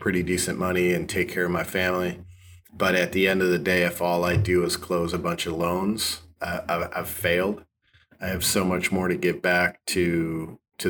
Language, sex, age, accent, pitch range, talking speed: English, male, 30-49, American, 90-105 Hz, 215 wpm